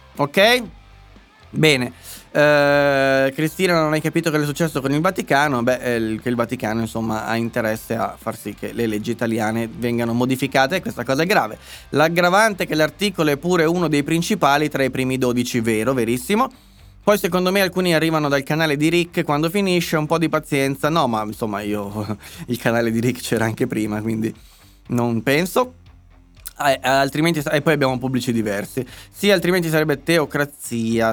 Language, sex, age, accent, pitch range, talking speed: Italian, male, 20-39, native, 115-155 Hz, 175 wpm